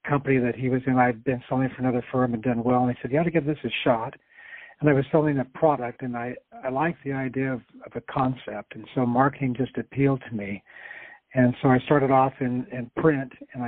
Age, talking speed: 60-79, 250 wpm